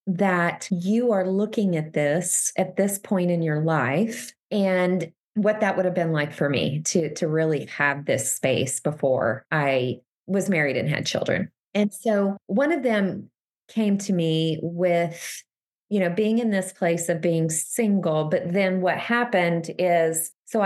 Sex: female